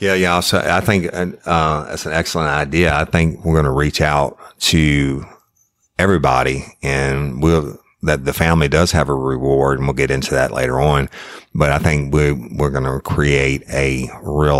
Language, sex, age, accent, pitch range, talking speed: English, male, 50-69, American, 65-80 Hz, 190 wpm